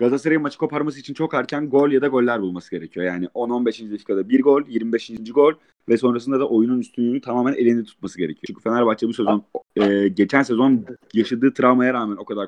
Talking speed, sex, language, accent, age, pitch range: 190 wpm, male, Turkish, native, 30-49, 110-135 Hz